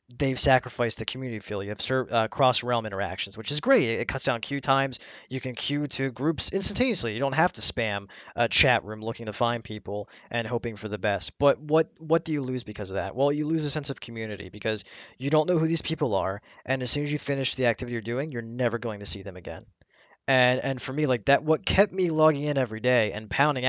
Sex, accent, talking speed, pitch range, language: male, American, 250 wpm, 110-140 Hz, English